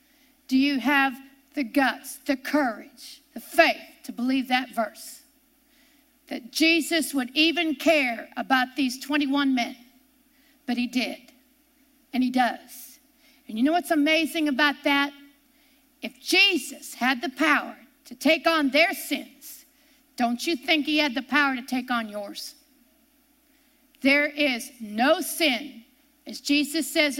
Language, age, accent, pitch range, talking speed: English, 50-69, American, 255-300 Hz, 140 wpm